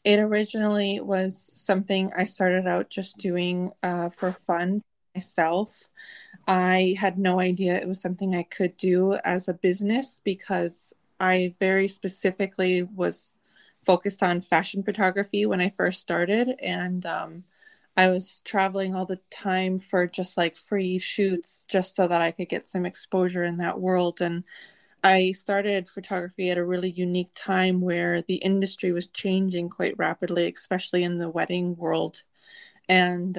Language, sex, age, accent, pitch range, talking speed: English, female, 20-39, American, 180-195 Hz, 155 wpm